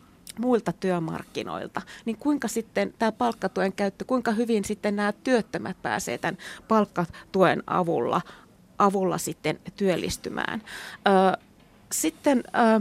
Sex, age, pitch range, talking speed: female, 30-49, 190-225 Hz, 100 wpm